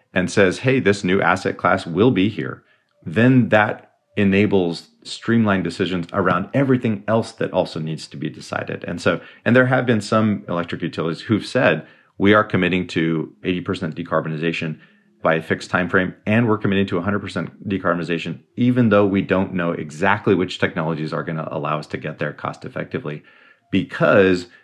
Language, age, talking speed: English, 30-49, 170 wpm